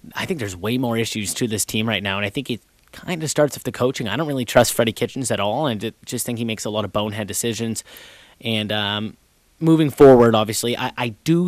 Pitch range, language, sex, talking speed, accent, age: 115-145 Hz, English, male, 250 wpm, American, 30-49